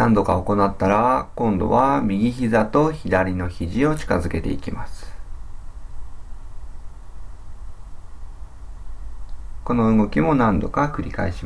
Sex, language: male, Japanese